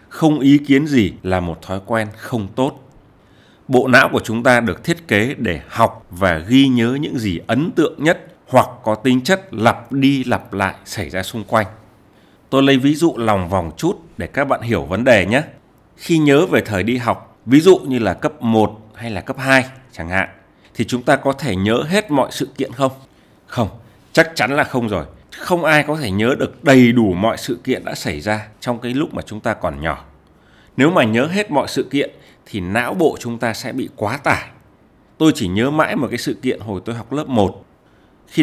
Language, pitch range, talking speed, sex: Vietnamese, 105-135 Hz, 220 wpm, male